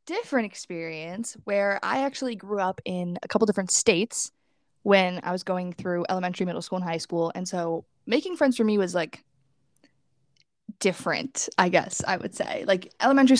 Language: English